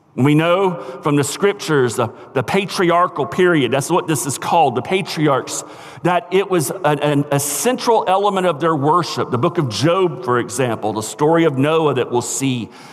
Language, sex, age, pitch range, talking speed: English, male, 50-69, 130-170 Hz, 175 wpm